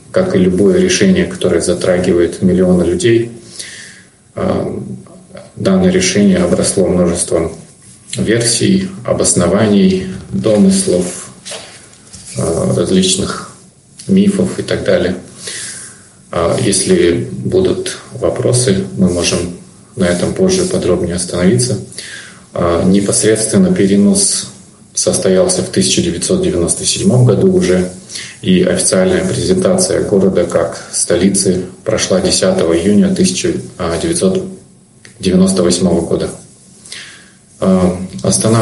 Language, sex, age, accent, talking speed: Russian, male, 30-49, native, 75 wpm